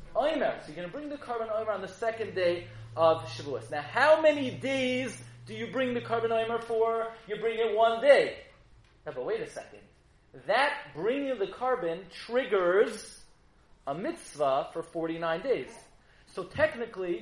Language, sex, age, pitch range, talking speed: English, male, 30-49, 205-265 Hz, 165 wpm